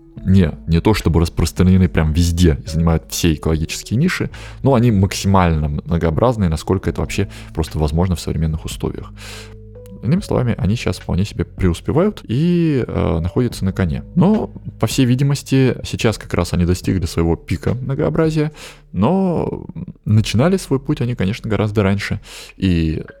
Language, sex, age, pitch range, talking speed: Russian, male, 20-39, 85-115 Hz, 145 wpm